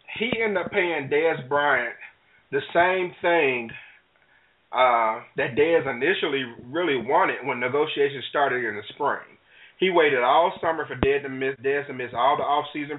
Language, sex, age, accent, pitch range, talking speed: English, male, 30-49, American, 125-165 Hz, 160 wpm